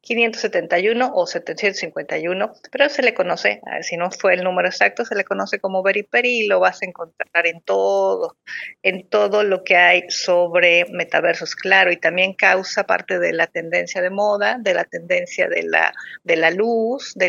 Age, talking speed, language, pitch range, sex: 40-59, 180 wpm, Spanish, 170-205 Hz, female